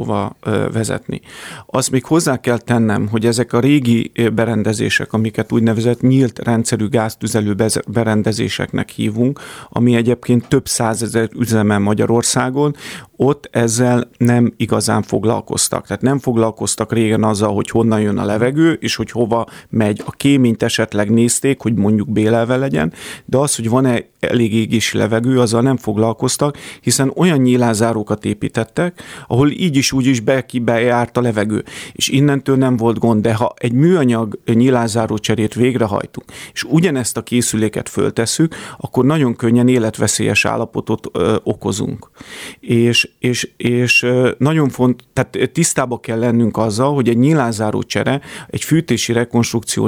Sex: male